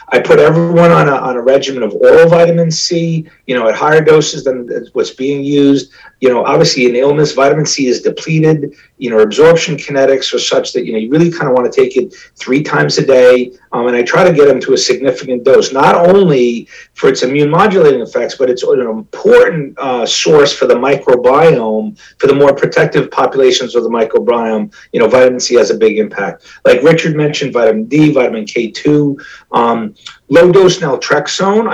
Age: 40-59